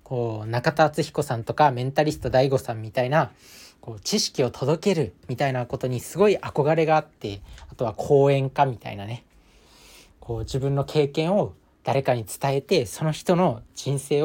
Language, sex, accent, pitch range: Japanese, male, native, 115-155 Hz